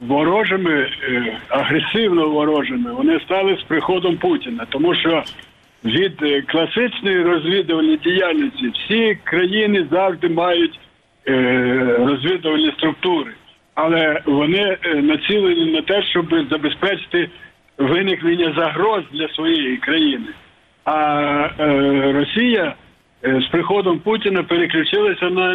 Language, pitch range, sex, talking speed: Ukrainian, 150-220 Hz, male, 90 wpm